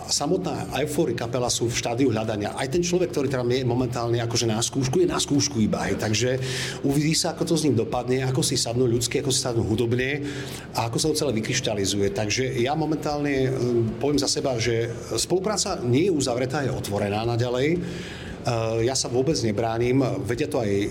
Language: Czech